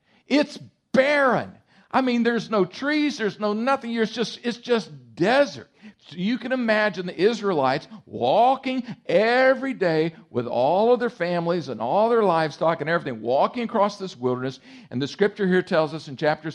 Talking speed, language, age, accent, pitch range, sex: 170 wpm, English, 50-69, American, 155-250 Hz, male